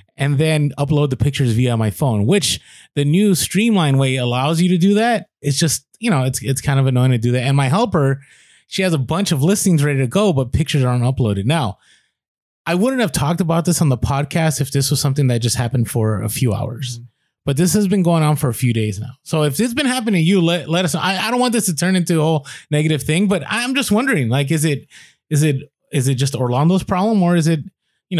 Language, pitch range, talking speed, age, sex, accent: English, 125-170 Hz, 255 wpm, 20-39, male, American